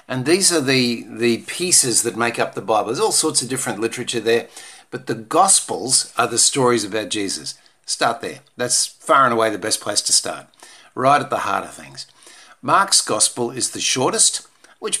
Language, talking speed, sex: English, 195 wpm, male